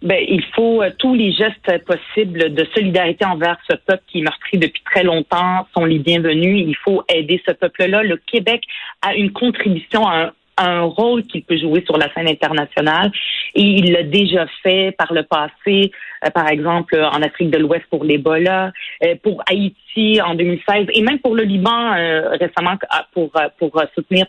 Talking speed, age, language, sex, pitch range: 190 wpm, 40-59, French, female, 165-200 Hz